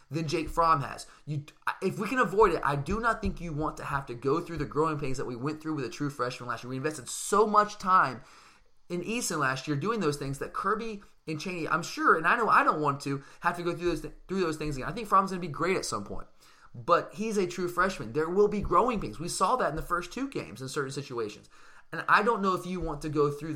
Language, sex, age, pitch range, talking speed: English, male, 20-39, 145-190 Hz, 275 wpm